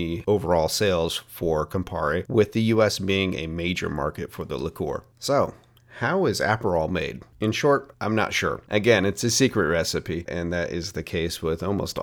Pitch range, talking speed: 85-105 Hz, 180 wpm